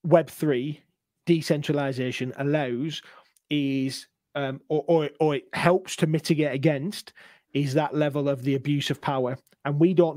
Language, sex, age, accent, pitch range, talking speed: English, male, 30-49, British, 135-155 Hz, 140 wpm